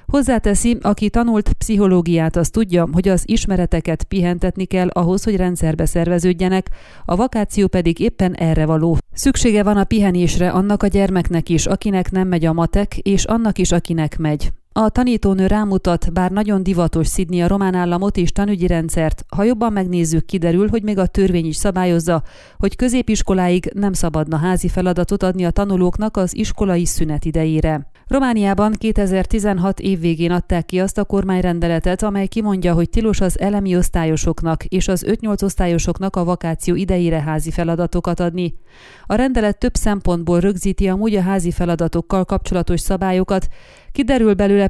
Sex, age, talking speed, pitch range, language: female, 30-49, 155 wpm, 170-200 Hz, Hungarian